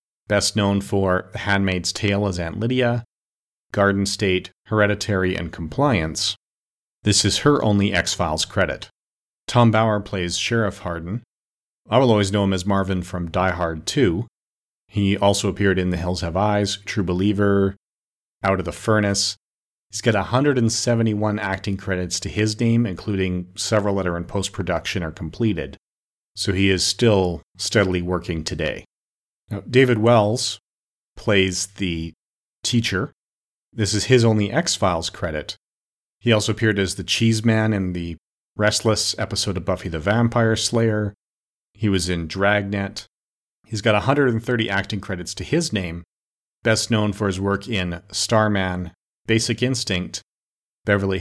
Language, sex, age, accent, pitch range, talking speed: English, male, 40-59, American, 90-110 Hz, 145 wpm